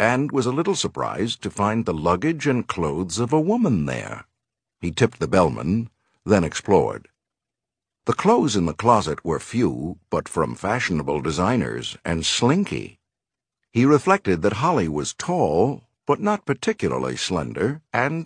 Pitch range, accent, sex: 90-135 Hz, American, male